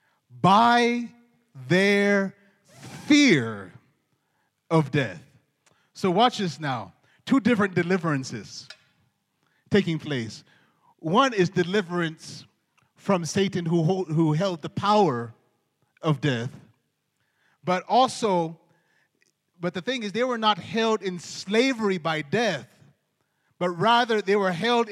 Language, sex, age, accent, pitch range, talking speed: English, male, 30-49, American, 165-220 Hz, 110 wpm